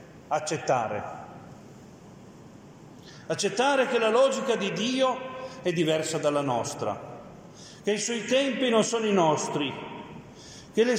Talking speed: 115 wpm